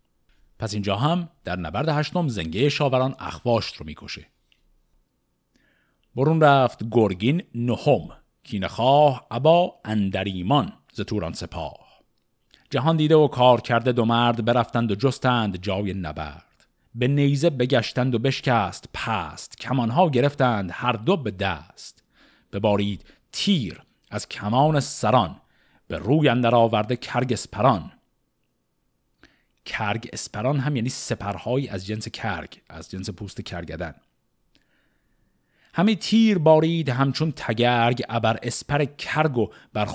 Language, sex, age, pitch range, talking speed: Persian, male, 50-69, 105-150 Hz, 115 wpm